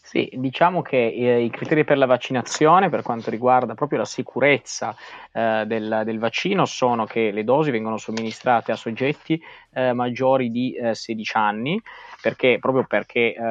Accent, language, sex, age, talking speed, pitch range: native, Italian, male, 20-39, 160 wpm, 110-125 Hz